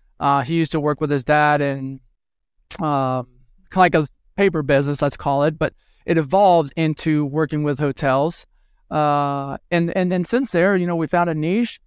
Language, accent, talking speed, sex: English, American, 190 wpm, male